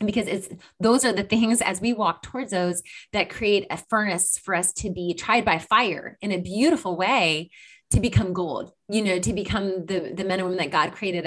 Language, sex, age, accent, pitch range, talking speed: English, female, 30-49, American, 175-215 Hz, 220 wpm